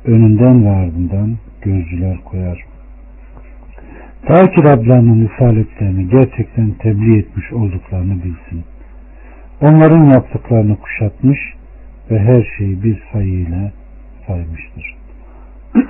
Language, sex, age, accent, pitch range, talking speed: Turkish, male, 50-69, native, 90-115 Hz, 85 wpm